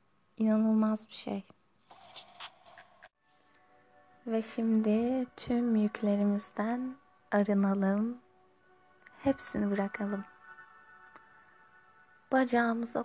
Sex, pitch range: female, 200-235 Hz